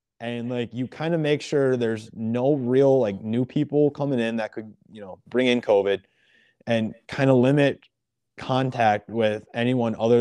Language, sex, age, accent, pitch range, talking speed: English, male, 20-39, American, 115-135 Hz, 175 wpm